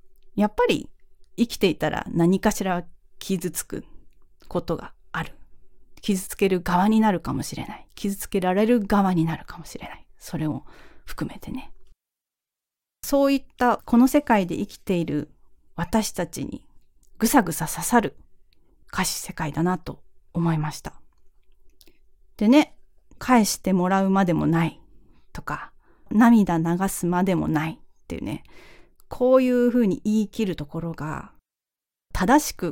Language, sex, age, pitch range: Japanese, female, 40-59, 170-220 Hz